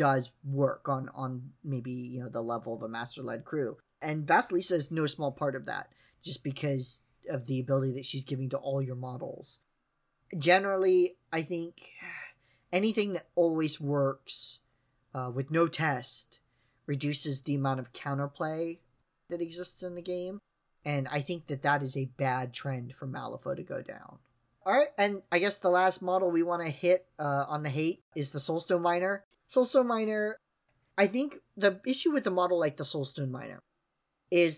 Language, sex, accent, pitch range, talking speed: English, male, American, 135-185 Hz, 175 wpm